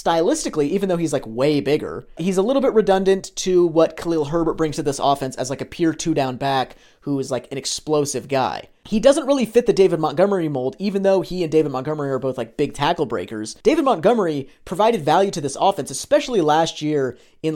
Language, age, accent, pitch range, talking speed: English, 30-49, American, 135-185 Hz, 215 wpm